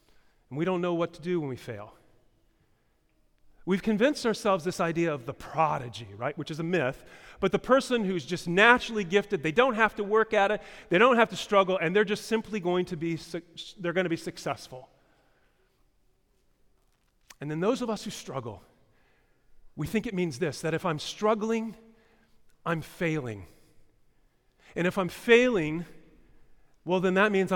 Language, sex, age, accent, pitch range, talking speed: English, male, 40-59, American, 155-220 Hz, 175 wpm